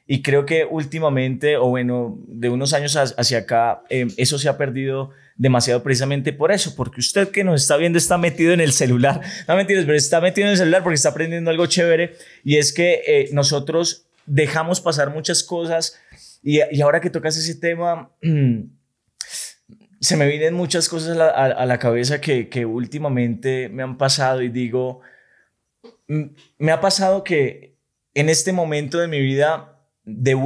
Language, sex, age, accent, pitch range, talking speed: Spanish, male, 20-39, Colombian, 130-160 Hz, 170 wpm